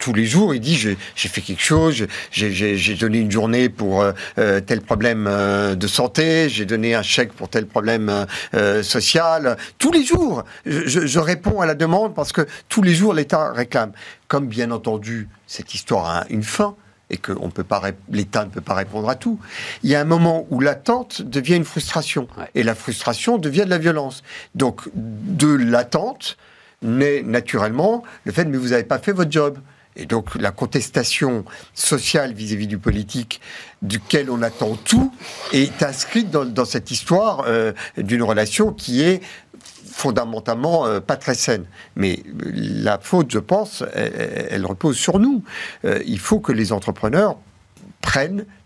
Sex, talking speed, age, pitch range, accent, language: male, 180 wpm, 50-69, 110-170 Hz, French, French